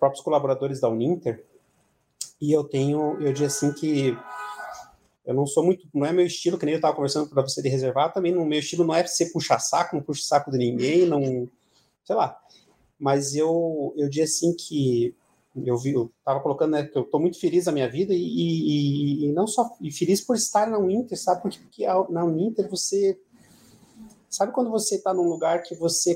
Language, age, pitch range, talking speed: Portuguese, 30-49, 130-170 Hz, 210 wpm